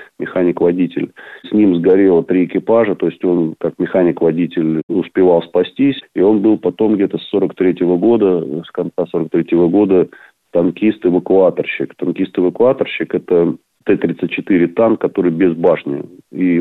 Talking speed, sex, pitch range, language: 125 wpm, male, 85-90 Hz, Russian